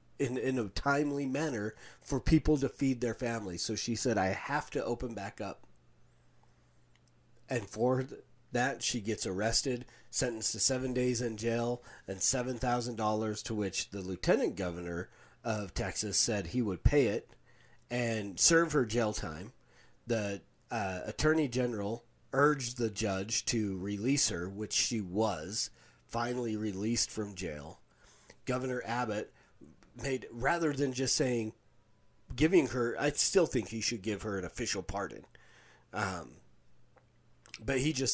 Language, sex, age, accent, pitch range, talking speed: English, male, 30-49, American, 105-125 Hz, 145 wpm